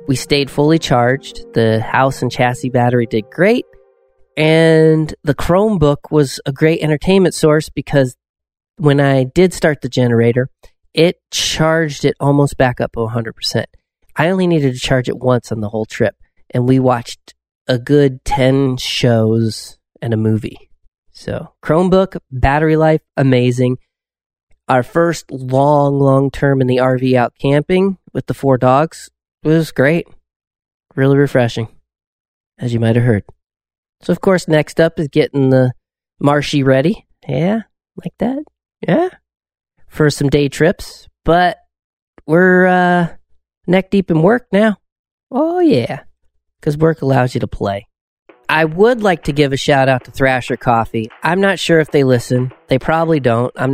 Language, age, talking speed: English, 30-49, 155 wpm